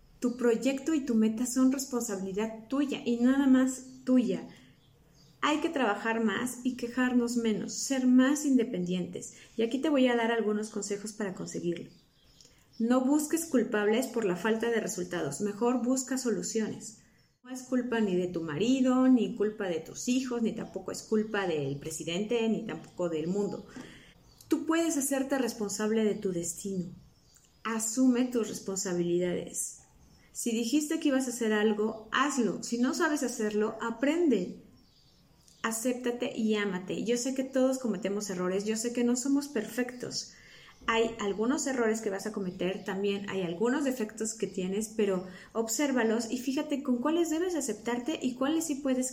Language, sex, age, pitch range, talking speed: English, female, 40-59, 205-255 Hz, 155 wpm